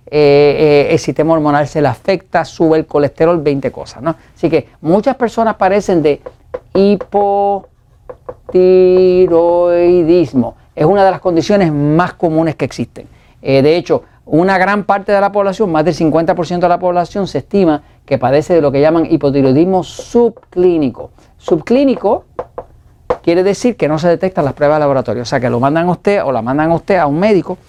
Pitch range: 145-200 Hz